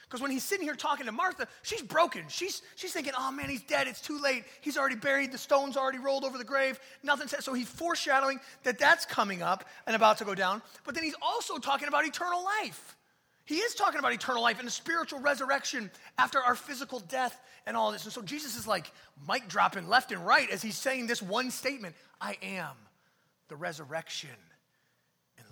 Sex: male